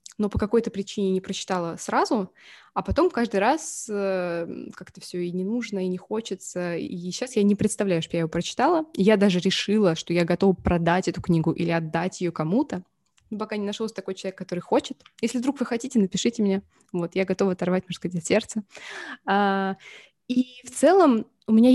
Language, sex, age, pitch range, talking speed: Russian, female, 20-39, 185-230 Hz, 180 wpm